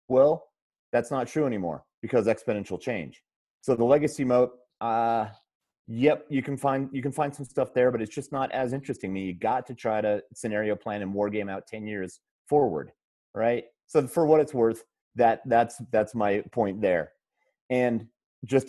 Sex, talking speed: male, 190 wpm